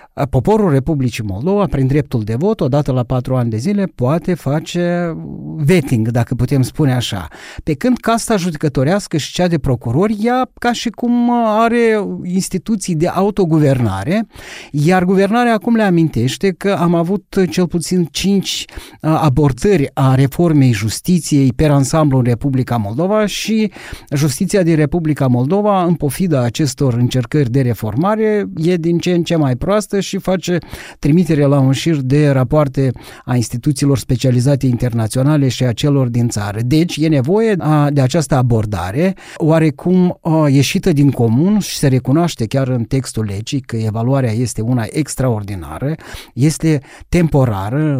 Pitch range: 130-180 Hz